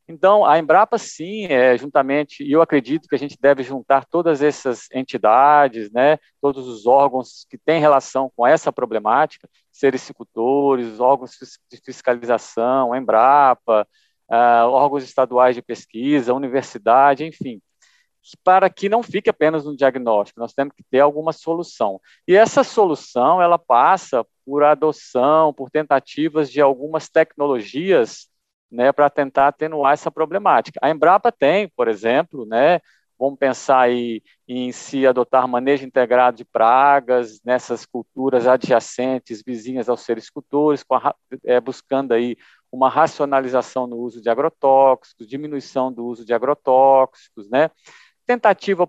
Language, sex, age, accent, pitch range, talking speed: Portuguese, male, 50-69, Brazilian, 125-150 Hz, 135 wpm